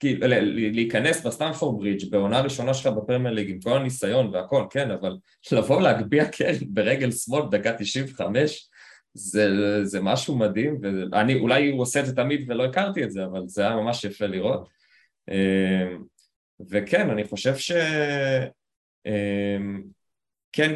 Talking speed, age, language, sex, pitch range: 115 wpm, 20-39, Hebrew, male, 95-125 Hz